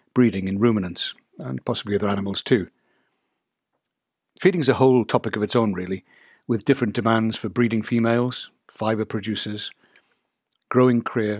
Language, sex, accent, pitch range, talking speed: English, male, British, 105-130 Hz, 140 wpm